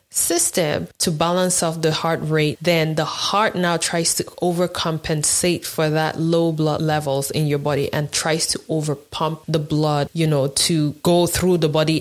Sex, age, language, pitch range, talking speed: female, 20-39, English, 150-175 Hz, 175 wpm